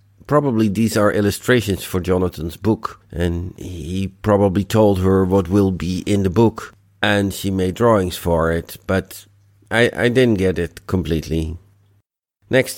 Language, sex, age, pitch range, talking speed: English, male, 50-69, 90-105 Hz, 150 wpm